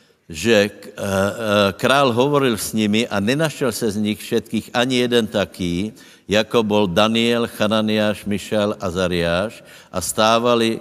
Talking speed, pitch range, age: 130 wpm, 100-120 Hz, 60-79